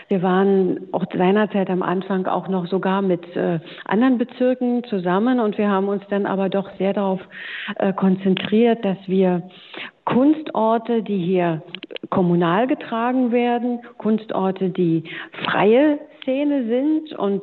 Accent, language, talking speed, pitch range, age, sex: German, German, 135 wpm, 185-230 Hz, 50-69, female